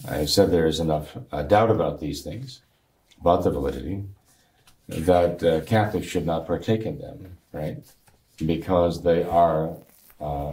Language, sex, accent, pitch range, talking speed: English, male, American, 80-105 Hz, 155 wpm